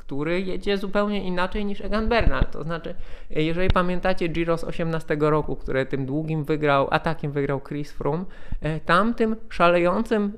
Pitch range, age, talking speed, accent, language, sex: 155-205 Hz, 20-39, 150 wpm, native, Polish, male